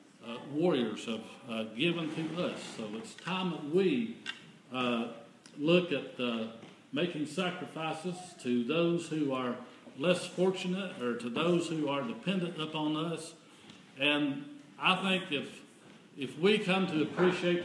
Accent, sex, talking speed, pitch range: American, male, 140 wpm, 140-175 Hz